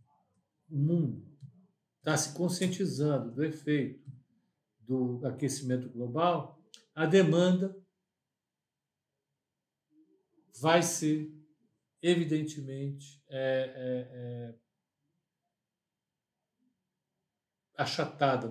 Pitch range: 130-165 Hz